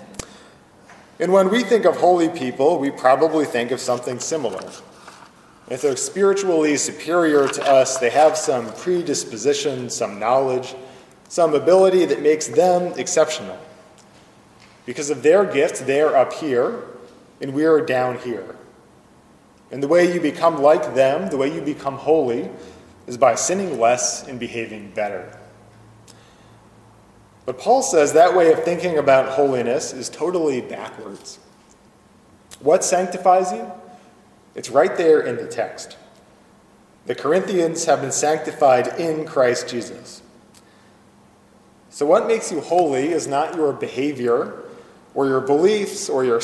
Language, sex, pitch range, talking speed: English, male, 125-175 Hz, 135 wpm